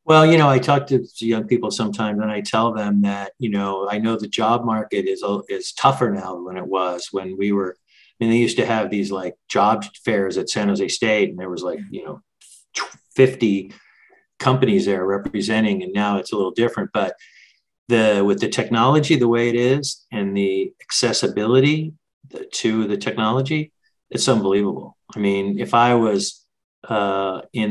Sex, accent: male, American